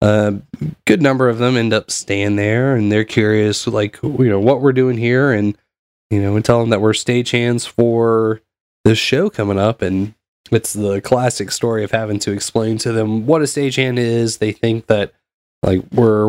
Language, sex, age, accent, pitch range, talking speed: English, male, 20-39, American, 105-125 Hz, 195 wpm